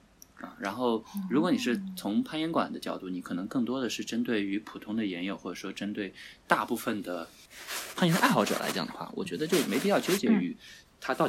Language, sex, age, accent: Chinese, male, 20-39, native